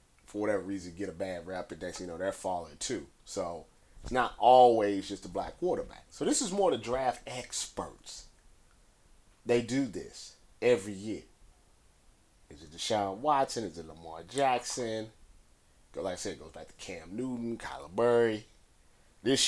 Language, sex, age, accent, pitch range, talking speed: English, male, 30-49, American, 85-120 Hz, 165 wpm